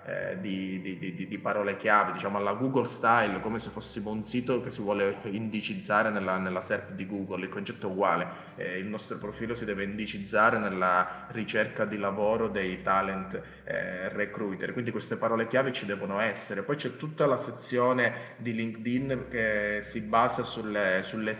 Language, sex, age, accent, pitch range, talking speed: Italian, male, 20-39, native, 105-120 Hz, 170 wpm